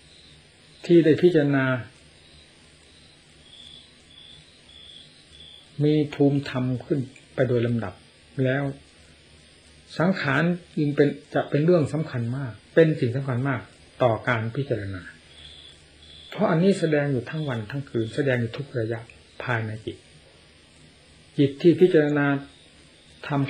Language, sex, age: Thai, male, 60-79